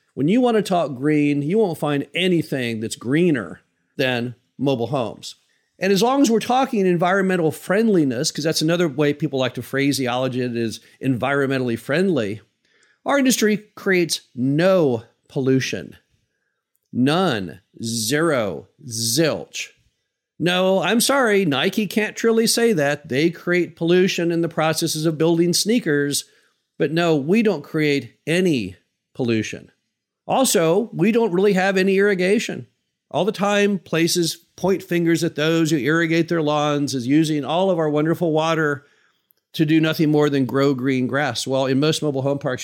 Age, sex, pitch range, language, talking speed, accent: 50-69, male, 135-185 Hz, English, 155 wpm, American